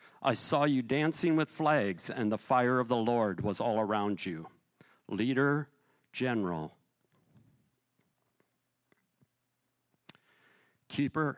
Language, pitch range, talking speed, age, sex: English, 100-130 Hz, 100 wpm, 60-79, male